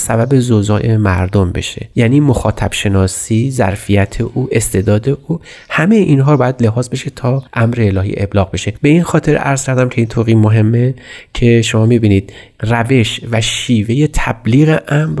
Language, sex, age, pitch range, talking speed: Persian, male, 30-49, 105-125 Hz, 155 wpm